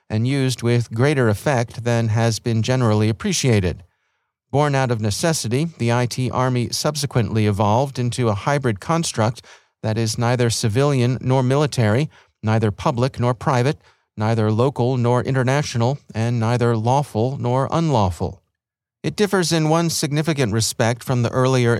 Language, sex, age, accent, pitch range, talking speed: English, male, 40-59, American, 110-130 Hz, 140 wpm